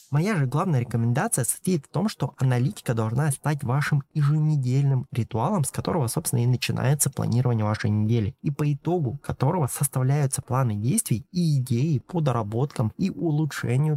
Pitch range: 115-150 Hz